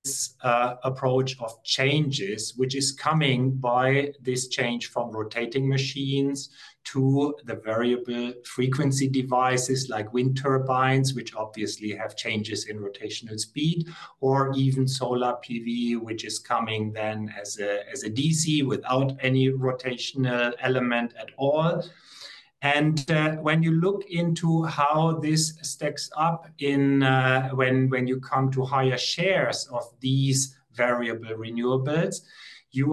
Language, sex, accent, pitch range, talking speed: English, male, German, 125-150 Hz, 130 wpm